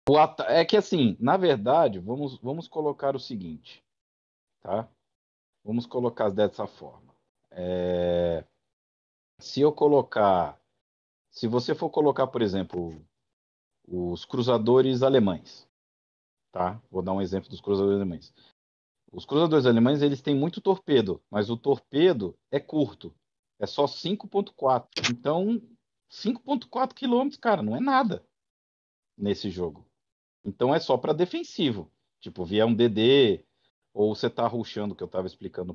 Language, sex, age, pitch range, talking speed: Portuguese, male, 50-69, 95-150 Hz, 130 wpm